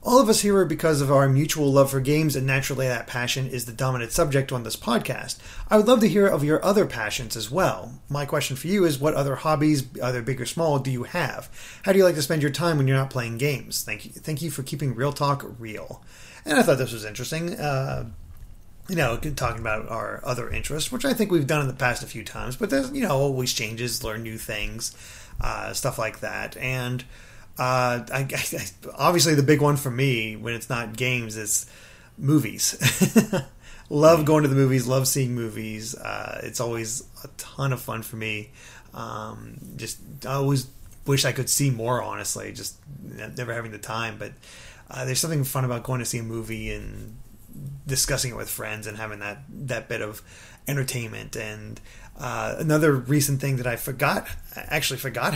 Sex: male